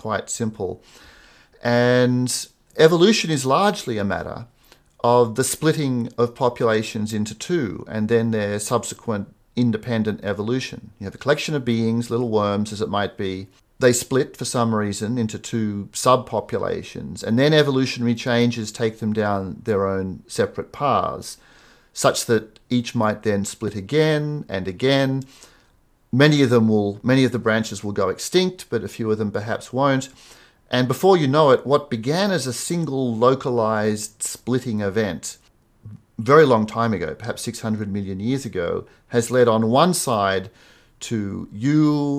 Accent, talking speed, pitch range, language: Australian, 155 wpm, 105-125 Hz, English